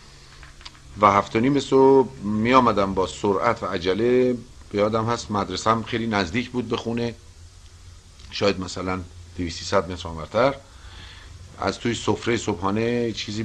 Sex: male